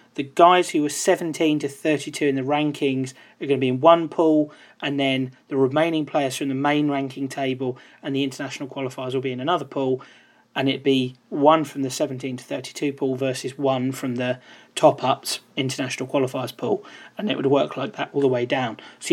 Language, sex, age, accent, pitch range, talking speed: English, male, 30-49, British, 135-150 Hz, 205 wpm